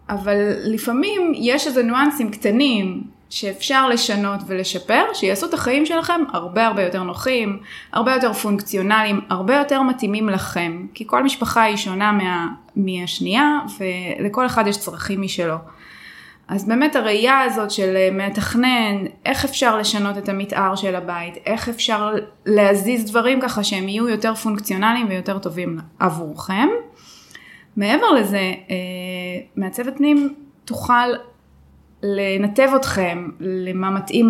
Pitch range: 195-235 Hz